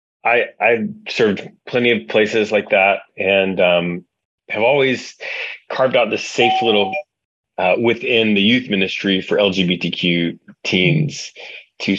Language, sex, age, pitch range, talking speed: English, male, 30-49, 90-105 Hz, 130 wpm